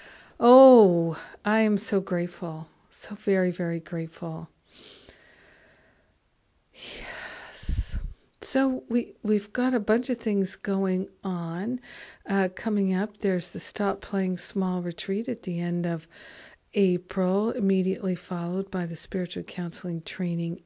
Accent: American